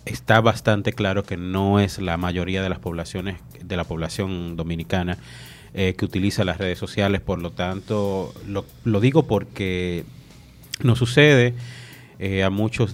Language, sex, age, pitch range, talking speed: English, male, 30-49, 90-110 Hz, 155 wpm